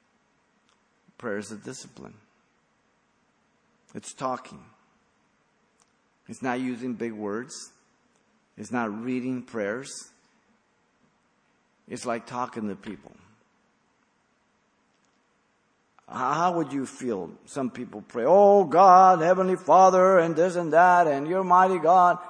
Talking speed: 105 wpm